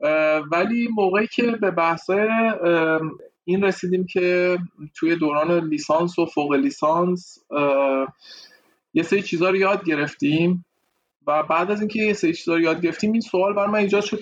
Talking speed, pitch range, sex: 160 wpm, 155-180 Hz, male